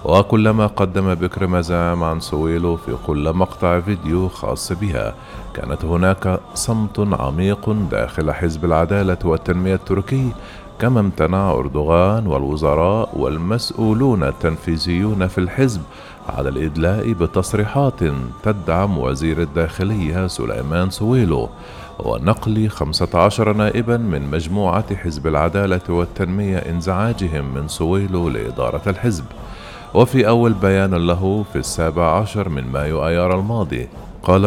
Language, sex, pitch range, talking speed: Arabic, male, 85-110 Hz, 110 wpm